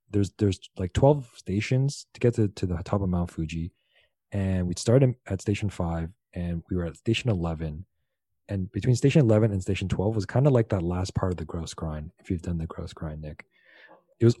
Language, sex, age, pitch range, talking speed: English, male, 30-49, 90-120 Hz, 220 wpm